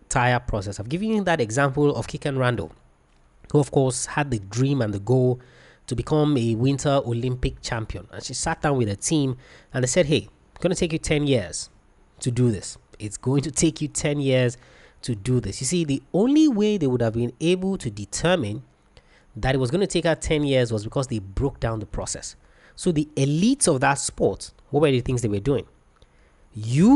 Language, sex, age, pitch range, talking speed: English, male, 20-39, 115-155 Hz, 220 wpm